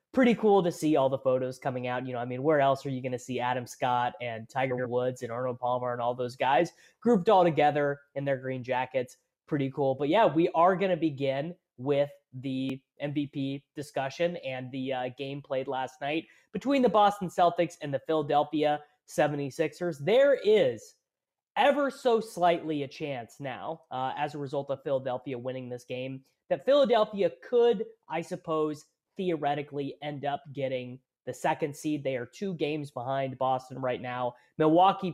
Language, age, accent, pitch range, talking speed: English, 20-39, American, 130-170 Hz, 180 wpm